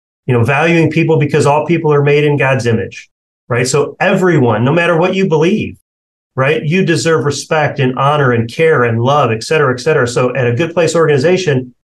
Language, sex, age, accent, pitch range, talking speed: English, male, 40-59, American, 120-155 Hz, 200 wpm